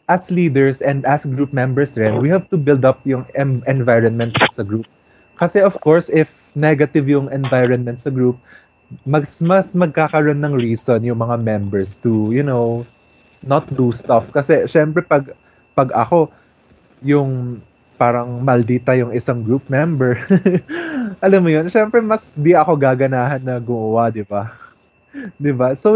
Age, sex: 20-39, male